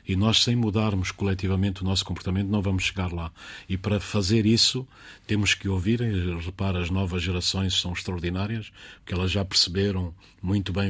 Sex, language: male, Portuguese